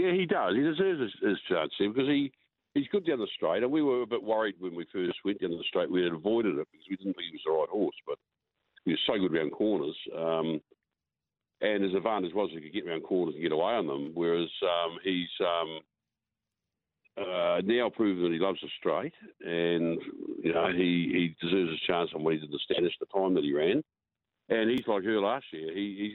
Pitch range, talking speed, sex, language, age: 80-115 Hz, 235 wpm, male, English, 60-79